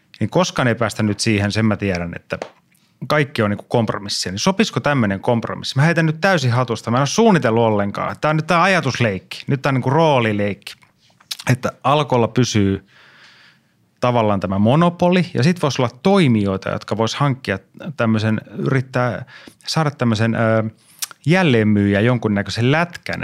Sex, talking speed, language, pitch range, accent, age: male, 160 wpm, Finnish, 110-140 Hz, native, 30-49